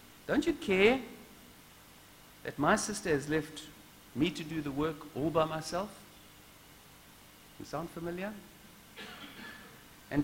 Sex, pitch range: male, 150-205 Hz